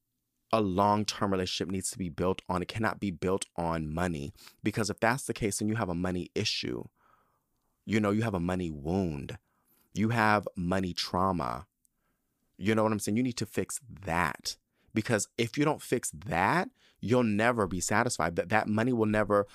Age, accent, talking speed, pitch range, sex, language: 30-49, American, 185 wpm, 95-130 Hz, male, English